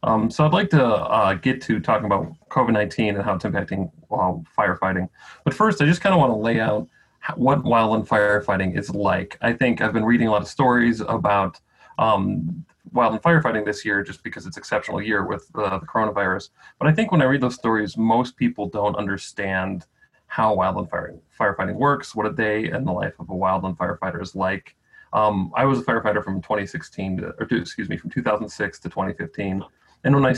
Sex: male